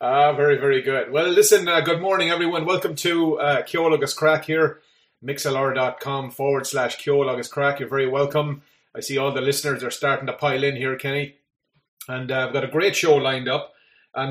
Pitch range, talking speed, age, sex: 130-155 Hz, 195 wpm, 30-49, male